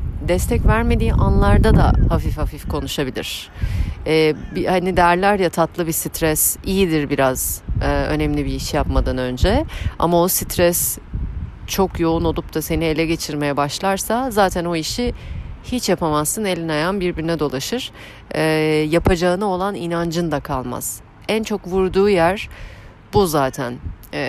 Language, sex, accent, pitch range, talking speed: Turkish, female, native, 140-185 Hz, 135 wpm